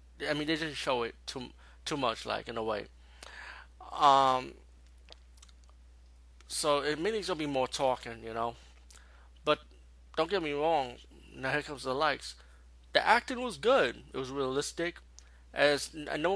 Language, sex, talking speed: English, male, 155 wpm